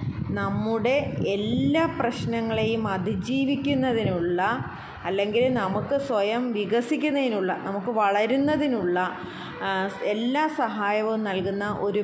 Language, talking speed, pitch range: Malayalam, 70 wpm, 195-245 Hz